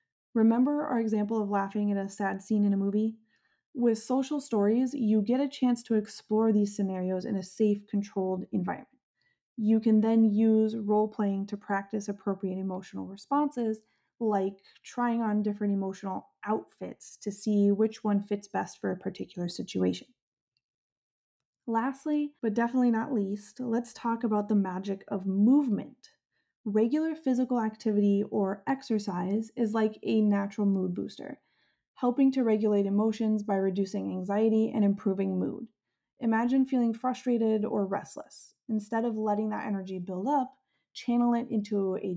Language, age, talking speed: English, 20-39, 145 wpm